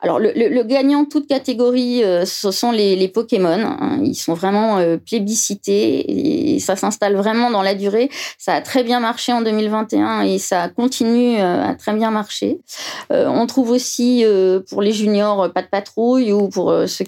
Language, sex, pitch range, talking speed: French, female, 195-245 Hz, 170 wpm